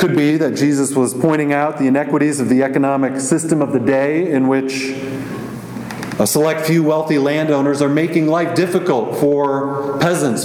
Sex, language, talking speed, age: male, English, 165 wpm, 40-59